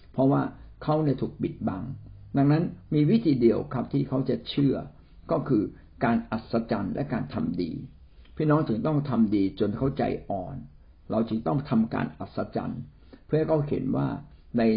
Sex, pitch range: male, 105-140 Hz